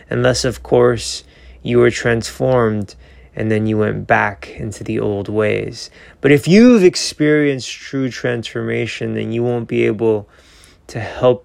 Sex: male